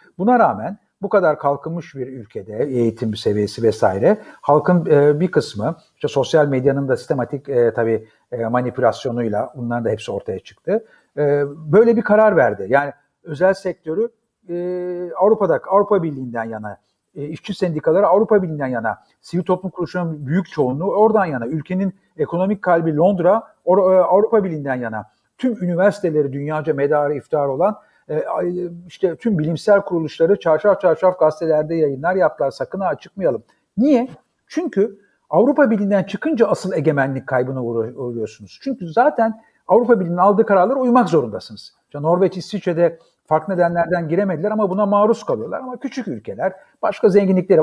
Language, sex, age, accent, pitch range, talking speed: Turkish, male, 50-69, native, 145-205 Hz, 140 wpm